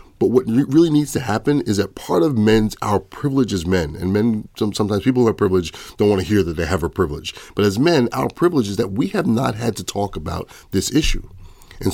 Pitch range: 95-115 Hz